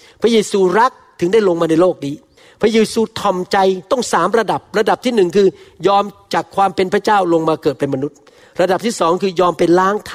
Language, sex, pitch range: Thai, male, 165-215 Hz